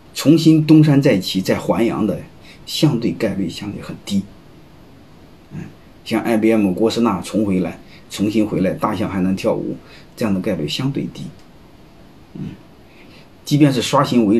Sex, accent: male, native